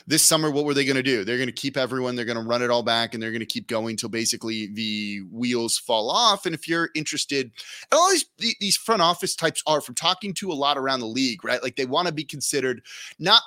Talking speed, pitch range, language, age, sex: 265 wpm, 120-155 Hz, English, 20-39, male